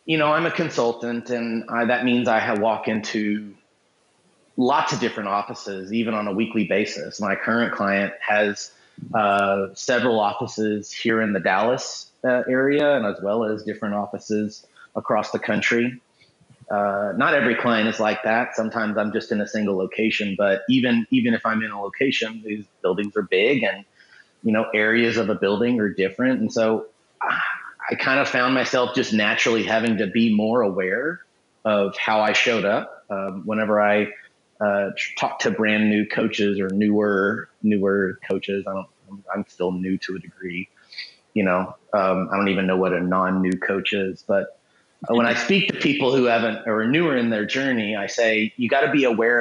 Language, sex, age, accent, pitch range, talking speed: English, male, 30-49, American, 100-115 Hz, 185 wpm